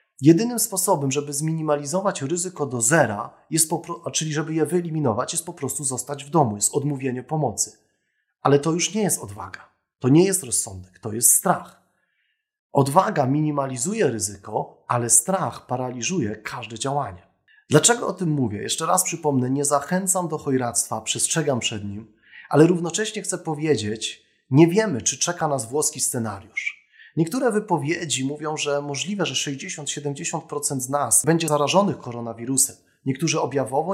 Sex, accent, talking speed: male, native, 145 wpm